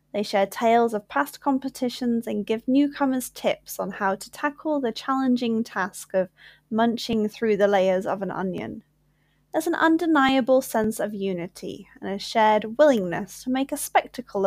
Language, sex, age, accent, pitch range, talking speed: English, female, 10-29, British, 195-265 Hz, 160 wpm